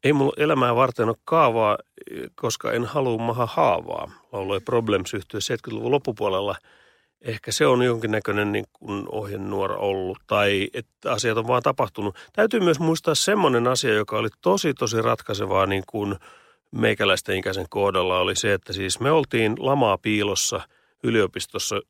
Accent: native